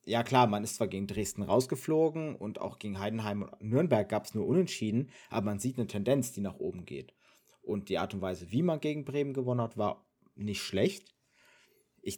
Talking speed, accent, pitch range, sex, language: 205 wpm, German, 105-130 Hz, male, German